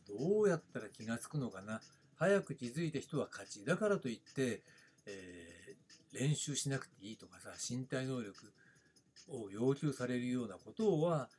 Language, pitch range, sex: Japanese, 120-170 Hz, male